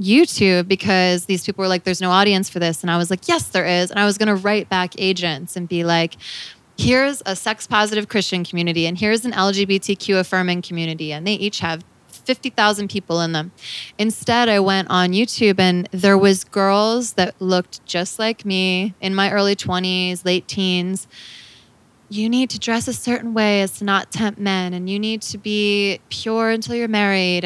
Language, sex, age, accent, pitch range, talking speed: English, female, 20-39, American, 175-205 Hz, 195 wpm